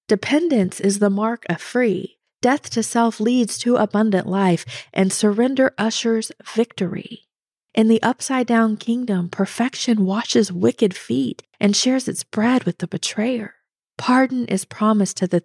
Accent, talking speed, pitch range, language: American, 145 wpm, 180-225 Hz, English